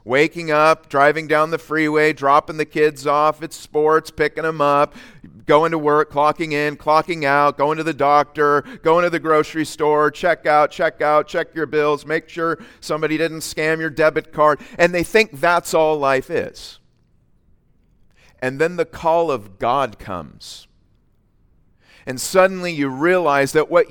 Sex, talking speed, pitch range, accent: male, 165 wpm, 135-165 Hz, American